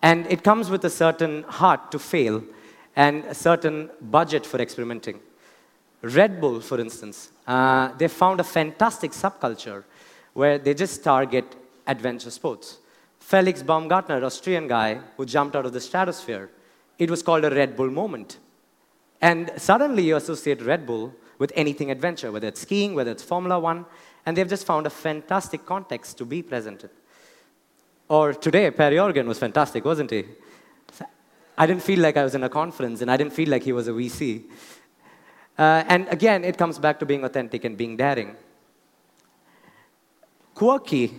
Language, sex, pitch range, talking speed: English, male, 125-170 Hz, 165 wpm